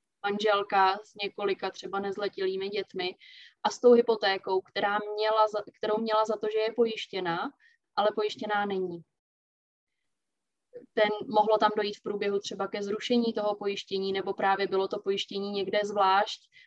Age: 20-39